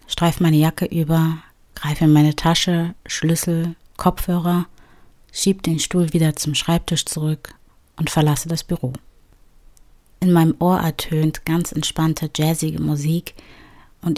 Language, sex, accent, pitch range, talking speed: German, female, German, 150-170 Hz, 125 wpm